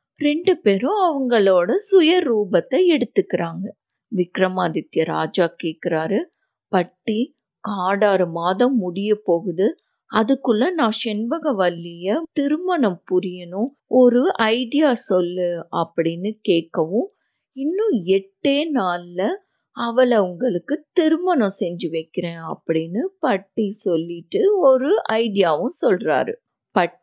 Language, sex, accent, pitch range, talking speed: Tamil, female, native, 180-285 Hz, 85 wpm